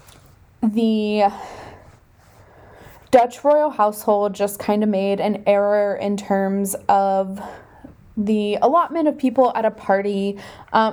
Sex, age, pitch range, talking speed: female, 10-29, 195-245 Hz, 115 wpm